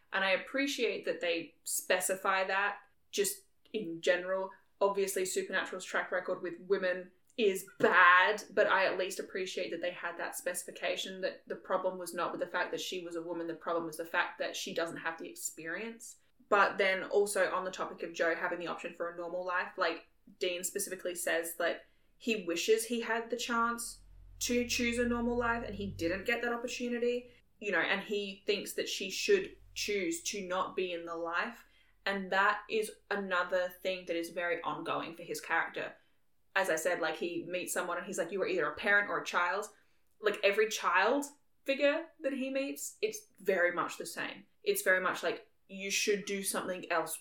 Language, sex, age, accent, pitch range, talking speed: English, female, 10-29, Australian, 180-245 Hz, 200 wpm